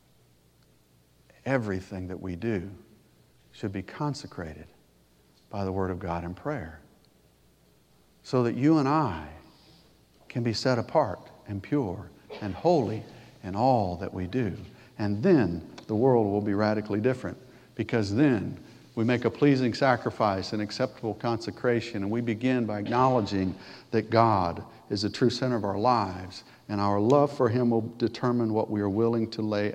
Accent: American